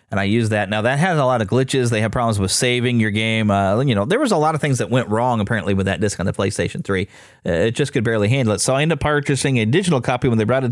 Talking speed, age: 315 wpm, 30-49